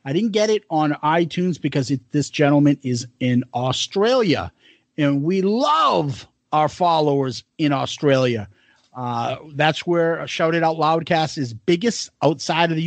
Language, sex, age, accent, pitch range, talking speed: English, male, 40-59, American, 140-195 Hz, 145 wpm